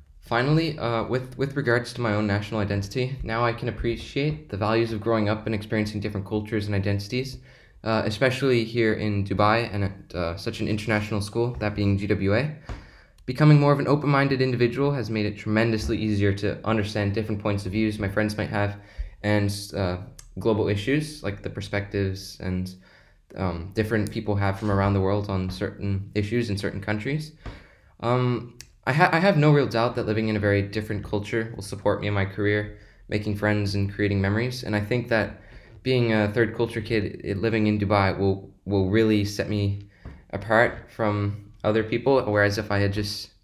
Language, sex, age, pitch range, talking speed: English, male, 20-39, 100-115 Hz, 190 wpm